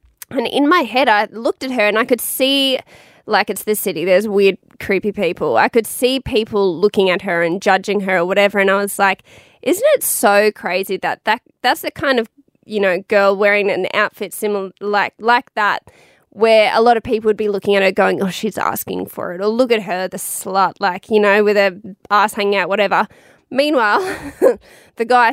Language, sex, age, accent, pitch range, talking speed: English, female, 20-39, Australian, 195-230 Hz, 215 wpm